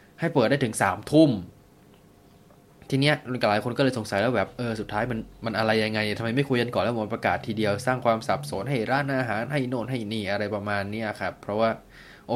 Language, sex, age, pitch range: Thai, male, 20-39, 100-125 Hz